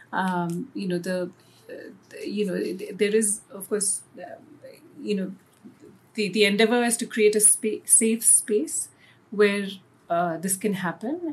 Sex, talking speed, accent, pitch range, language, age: female, 155 wpm, Indian, 180-220 Hz, English, 40-59